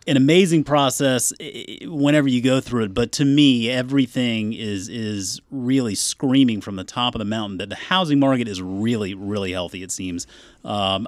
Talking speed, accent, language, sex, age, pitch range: 180 wpm, American, English, male, 30-49, 100-135 Hz